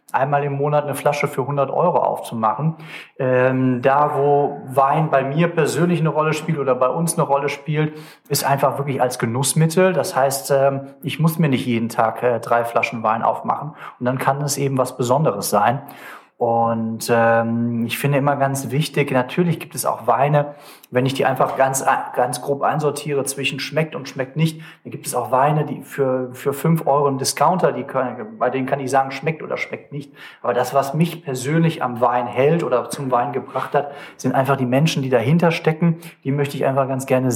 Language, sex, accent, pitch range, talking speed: German, male, German, 125-150 Hz, 195 wpm